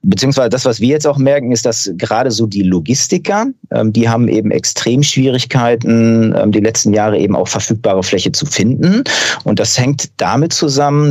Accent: German